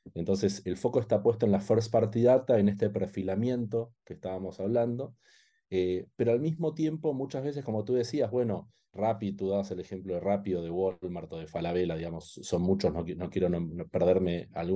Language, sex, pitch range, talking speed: English, male, 95-120 Hz, 200 wpm